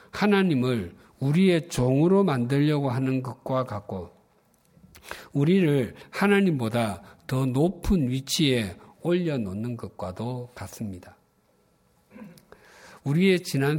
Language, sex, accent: Korean, male, native